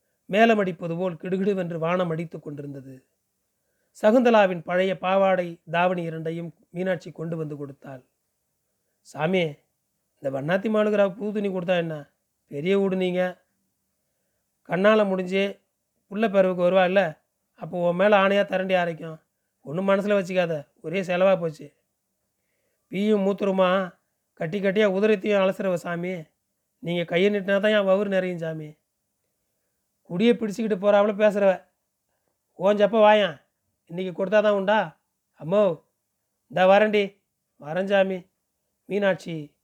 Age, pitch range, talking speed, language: 30-49, 160-195 Hz, 105 wpm, Tamil